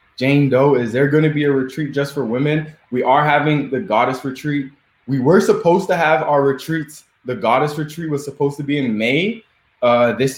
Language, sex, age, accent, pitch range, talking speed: English, male, 20-39, American, 120-145 Hz, 210 wpm